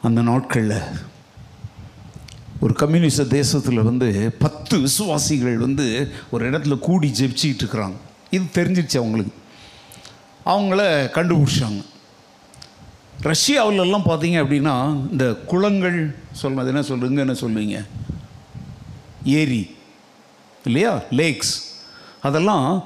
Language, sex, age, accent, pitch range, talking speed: Tamil, male, 60-79, native, 135-180 Hz, 85 wpm